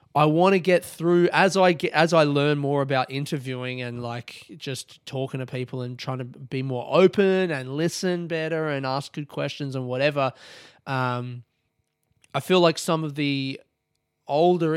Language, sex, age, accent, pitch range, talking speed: English, male, 20-39, Australian, 130-160 Hz, 175 wpm